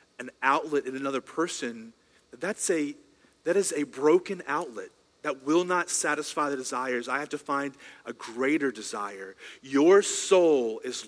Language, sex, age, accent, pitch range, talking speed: English, male, 40-59, American, 130-185 Hz, 150 wpm